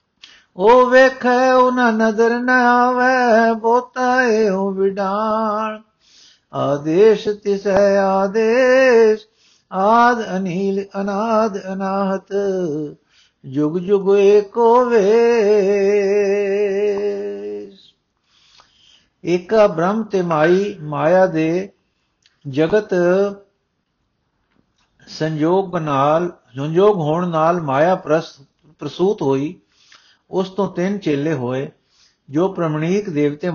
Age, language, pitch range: 50-69, Punjabi, 155-205 Hz